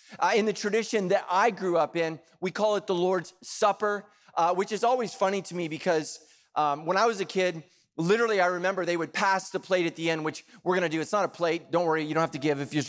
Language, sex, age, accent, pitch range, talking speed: English, male, 30-49, American, 150-185 Hz, 270 wpm